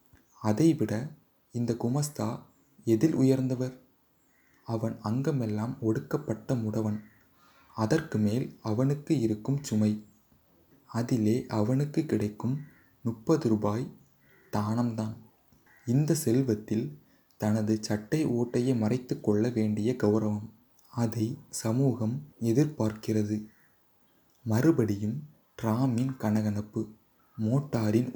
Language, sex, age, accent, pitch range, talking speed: Tamil, male, 20-39, native, 110-130 Hz, 75 wpm